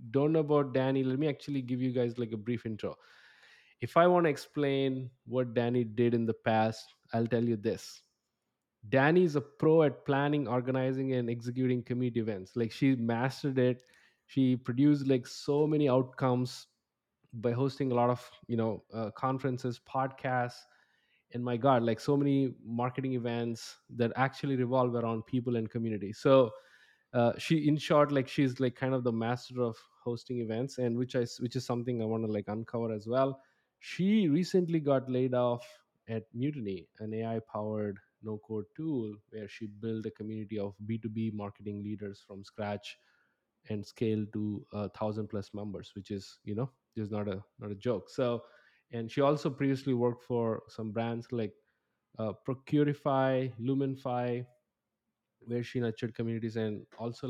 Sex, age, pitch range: male, 20-39, 110-135 Hz